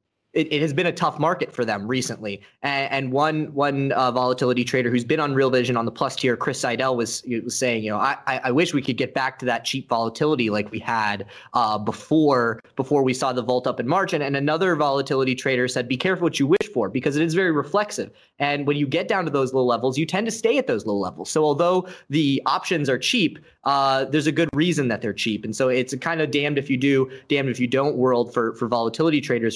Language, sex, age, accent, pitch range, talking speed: English, male, 20-39, American, 120-150 Hz, 240 wpm